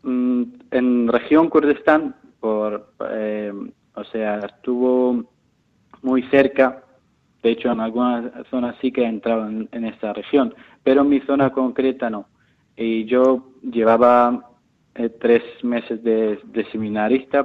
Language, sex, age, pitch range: Spanish, male, 20-39, 110-125 Hz